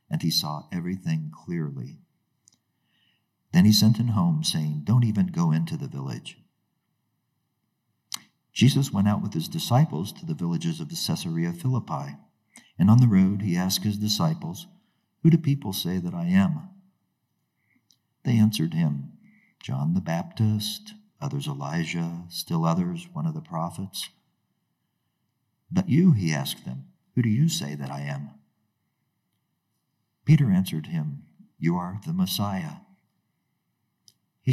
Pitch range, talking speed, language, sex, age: 105-170 Hz, 135 wpm, English, male, 50-69